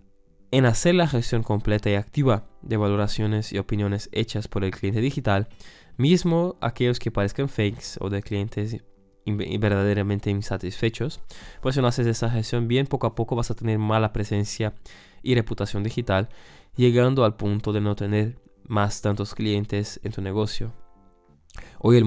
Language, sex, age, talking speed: Spanish, male, 20-39, 160 wpm